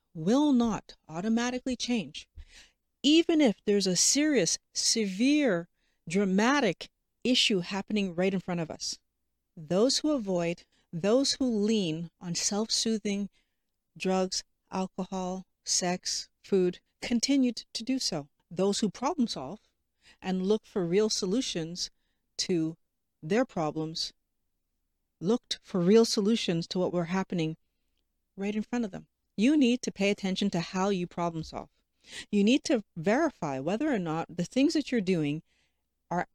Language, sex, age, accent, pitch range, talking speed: English, female, 40-59, American, 175-240 Hz, 135 wpm